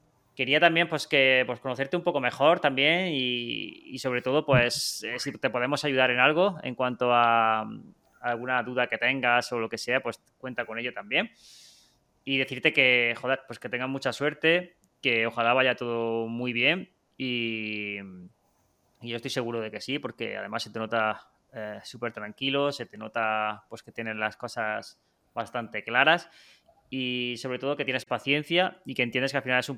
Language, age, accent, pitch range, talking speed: Spanish, 20-39, Spanish, 125-150 Hz, 185 wpm